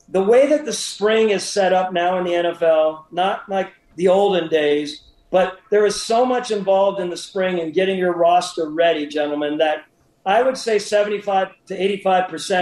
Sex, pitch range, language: male, 175-215 Hz, English